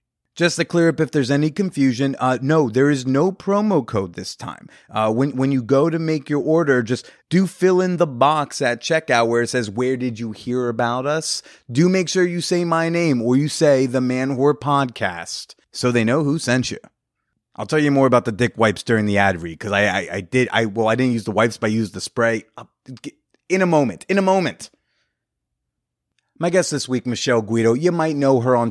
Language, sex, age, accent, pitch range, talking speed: English, male, 30-49, American, 115-150 Hz, 230 wpm